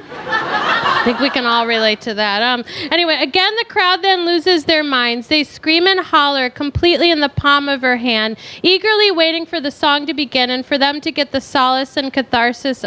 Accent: American